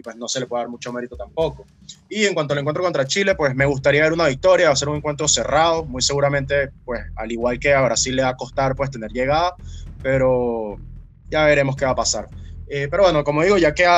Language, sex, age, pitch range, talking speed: Spanish, male, 20-39, 125-155 Hz, 250 wpm